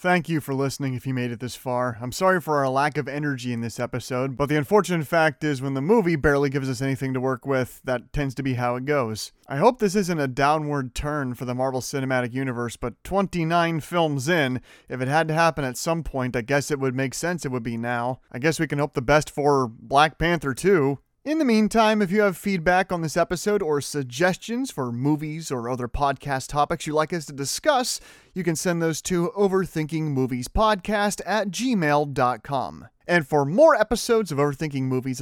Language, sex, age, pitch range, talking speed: English, male, 30-49, 135-195 Hz, 215 wpm